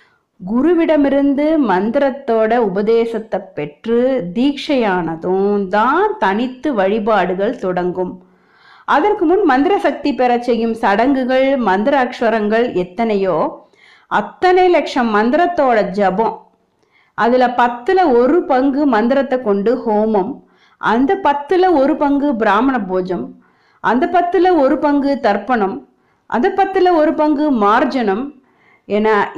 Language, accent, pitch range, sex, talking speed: Tamil, native, 210-295 Hz, female, 100 wpm